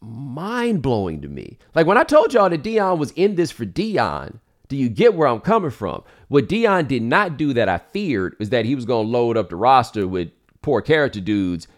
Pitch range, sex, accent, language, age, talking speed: 85-120 Hz, male, American, English, 40-59, 225 wpm